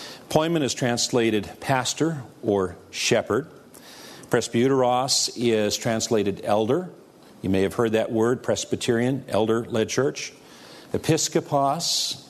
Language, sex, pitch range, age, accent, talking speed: English, male, 105-130 Hz, 50-69, American, 100 wpm